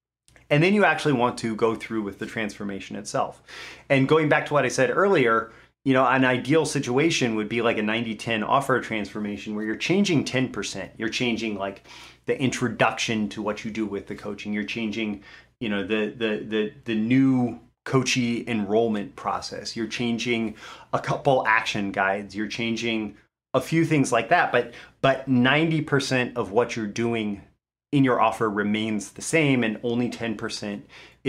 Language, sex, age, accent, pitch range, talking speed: English, male, 30-49, American, 105-130 Hz, 170 wpm